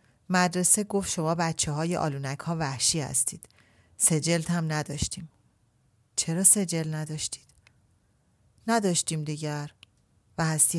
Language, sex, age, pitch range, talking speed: Persian, female, 40-59, 135-175 Hz, 105 wpm